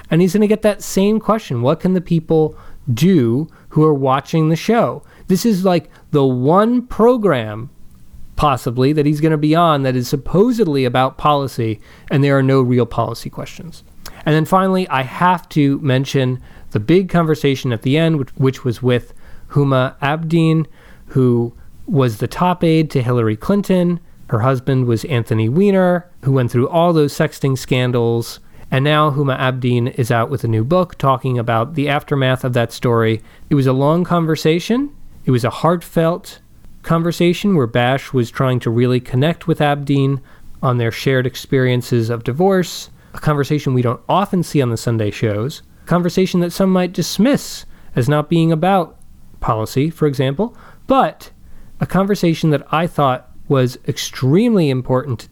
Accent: American